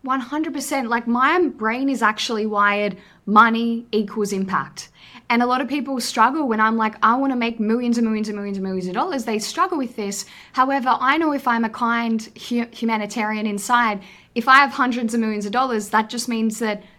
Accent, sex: Australian, female